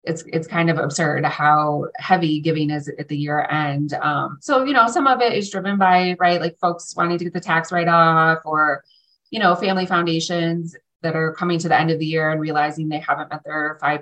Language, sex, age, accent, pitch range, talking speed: English, female, 20-39, American, 165-200 Hz, 230 wpm